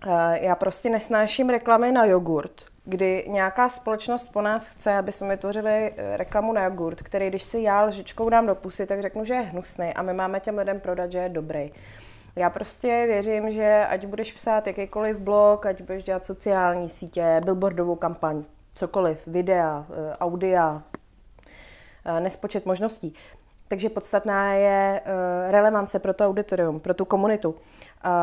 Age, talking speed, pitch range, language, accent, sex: 30-49, 150 wpm, 185-210 Hz, Czech, native, female